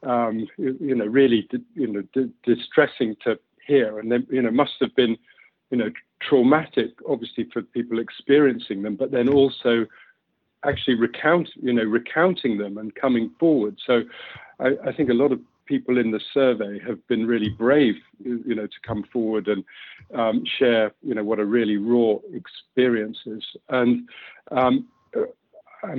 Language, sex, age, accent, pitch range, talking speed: English, male, 50-69, British, 115-135 Hz, 160 wpm